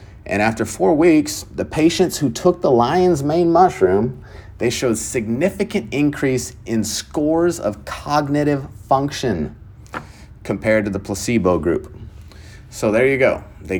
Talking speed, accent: 135 wpm, American